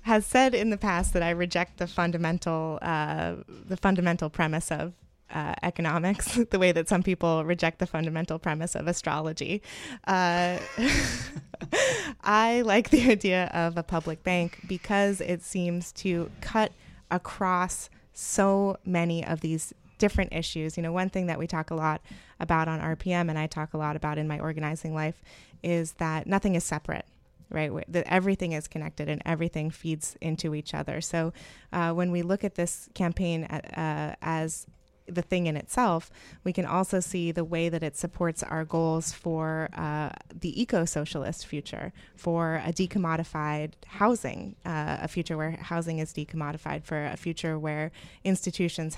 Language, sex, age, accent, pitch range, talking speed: English, female, 20-39, American, 160-180 Hz, 165 wpm